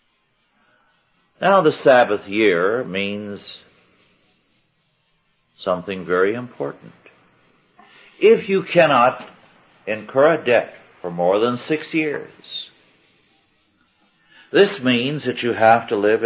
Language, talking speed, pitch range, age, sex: English, 95 wpm, 105-150 Hz, 60-79, male